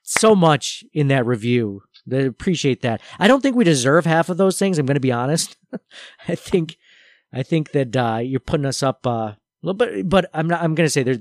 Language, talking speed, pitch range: English, 235 wpm, 125-160 Hz